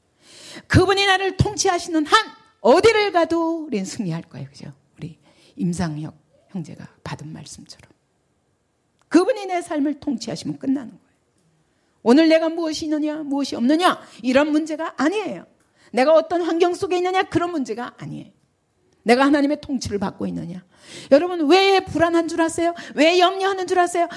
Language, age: Korean, 40-59